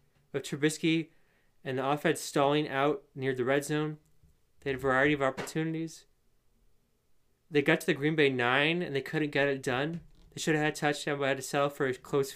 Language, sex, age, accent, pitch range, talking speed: English, male, 20-39, American, 135-155 Hz, 210 wpm